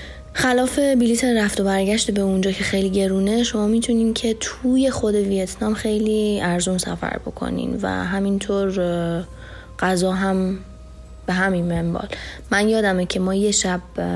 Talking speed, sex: 140 wpm, female